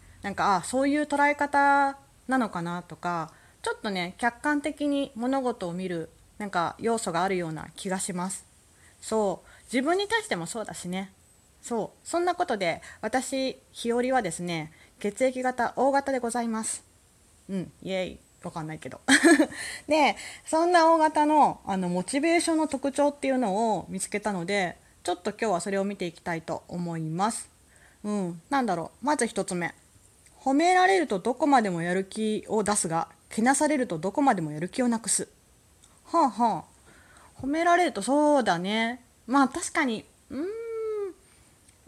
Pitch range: 185-275 Hz